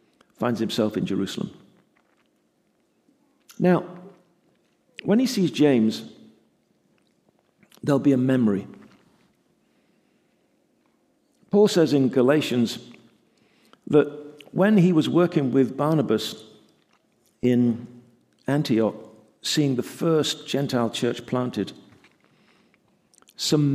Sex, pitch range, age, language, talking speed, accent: male, 125-175 Hz, 50-69, English, 85 wpm, British